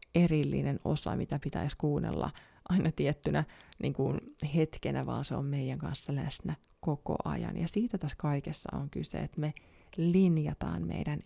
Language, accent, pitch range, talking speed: Finnish, native, 150-180 Hz, 150 wpm